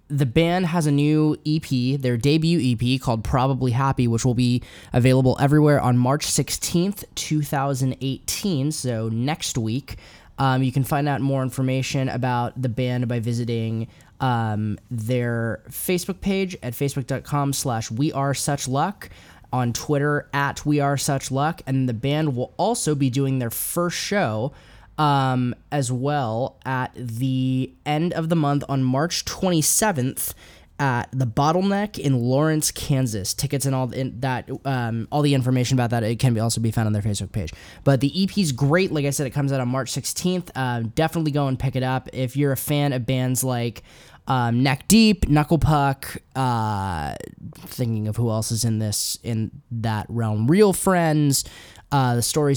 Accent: American